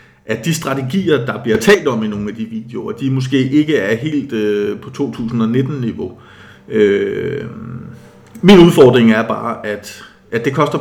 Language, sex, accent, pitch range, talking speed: Danish, male, native, 120-155 Hz, 160 wpm